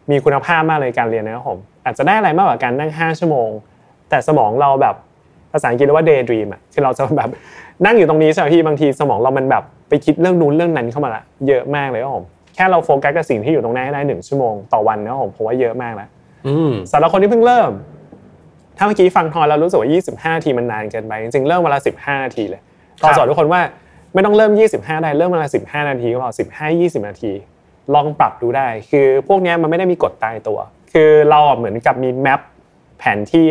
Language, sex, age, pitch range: Thai, male, 20-39, 130-170 Hz